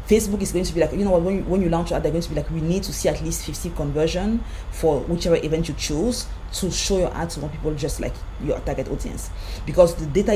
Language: English